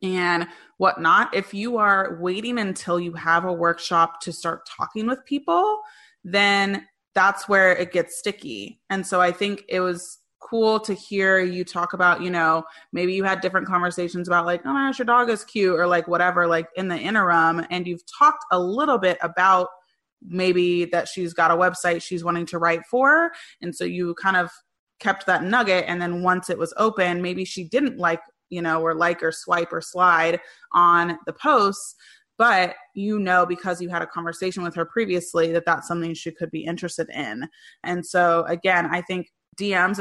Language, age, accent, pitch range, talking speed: English, 20-39, American, 170-195 Hz, 195 wpm